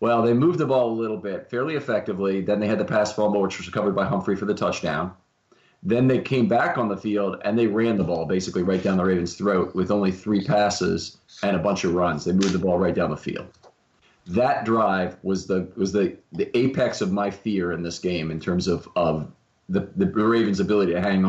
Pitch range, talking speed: 90-105 Hz, 235 wpm